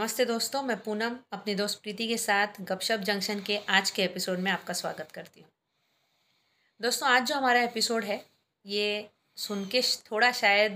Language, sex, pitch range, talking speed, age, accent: Hindi, female, 190-245 Hz, 165 wpm, 30-49, native